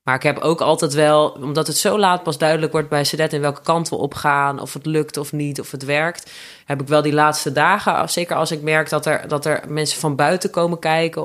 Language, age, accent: Dutch, 20-39, Dutch